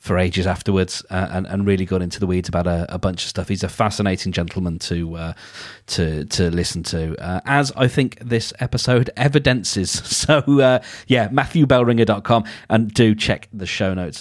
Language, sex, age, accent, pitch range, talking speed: English, male, 30-49, British, 100-135 Hz, 185 wpm